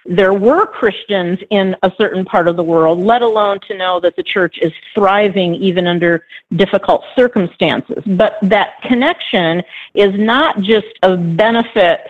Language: English